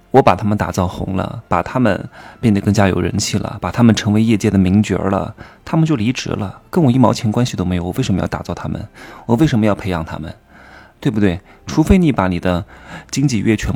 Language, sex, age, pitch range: Chinese, male, 20-39, 100-145 Hz